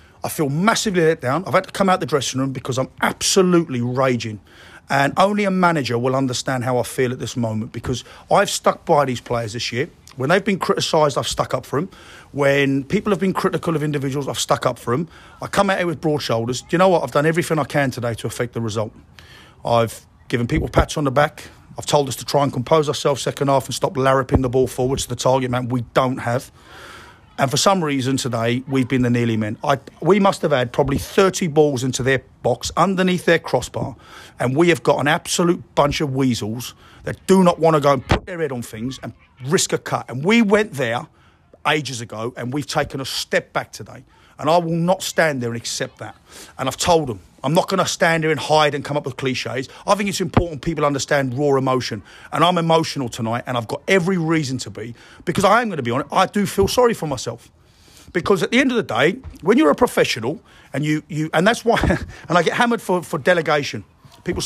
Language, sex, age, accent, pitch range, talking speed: English, male, 40-59, British, 125-165 Hz, 235 wpm